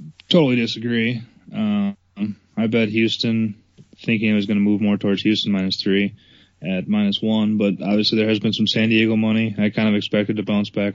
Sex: male